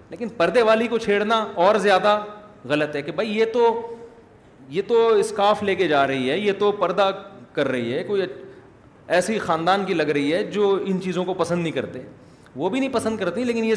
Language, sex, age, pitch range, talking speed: Urdu, male, 30-49, 140-195 Hz, 210 wpm